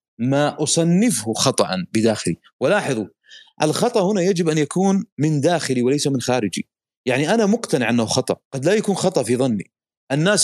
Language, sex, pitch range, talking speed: Arabic, male, 130-180 Hz, 155 wpm